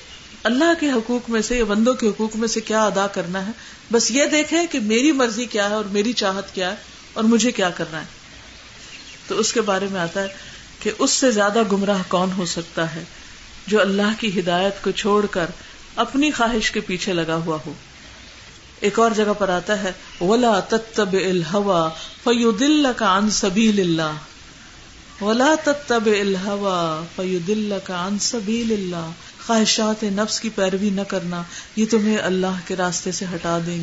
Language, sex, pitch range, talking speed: Urdu, female, 190-235 Hz, 165 wpm